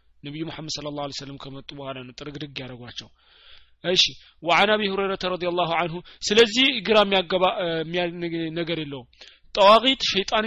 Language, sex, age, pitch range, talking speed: Amharic, male, 30-49, 155-185 Hz, 120 wpm